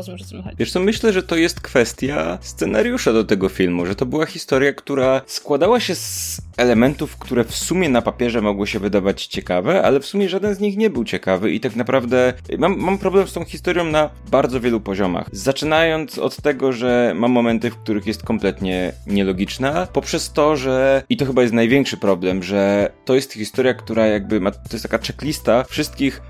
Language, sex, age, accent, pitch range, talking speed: Polish, male, 20-39, native, 110-150 Hz, 190 wpm